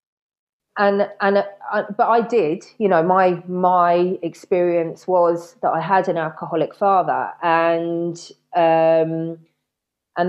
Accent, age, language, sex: British, 30-49, English, female